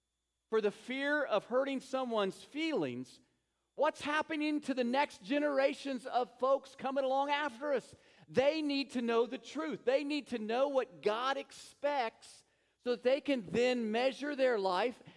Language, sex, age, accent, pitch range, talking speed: English, male, 40-59, American, 155-255 Hz, 160 wpm